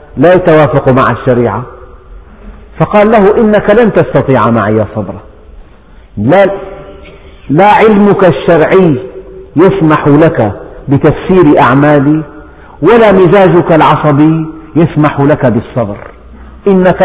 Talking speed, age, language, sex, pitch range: 90 wpm, 50-69, Arabic, male, 130-185 Hz